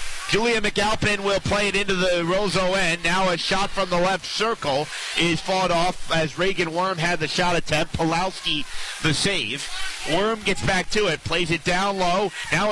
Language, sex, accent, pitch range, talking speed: English, male, American, 170-195 Hz, 185 wpm